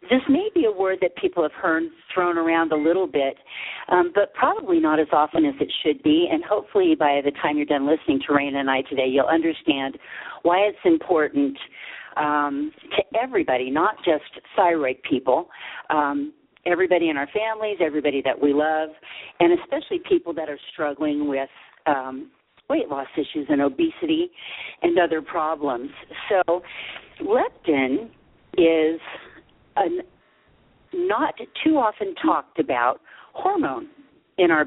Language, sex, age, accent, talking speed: English, female, 50-69, American, 145 wpm